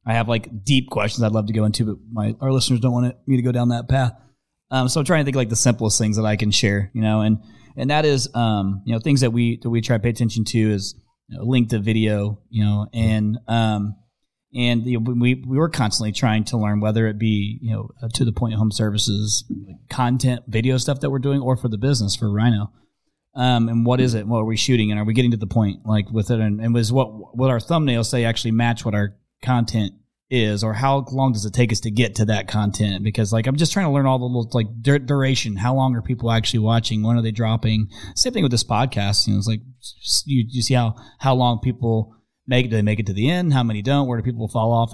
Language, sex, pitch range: English, male, 110-125 Hz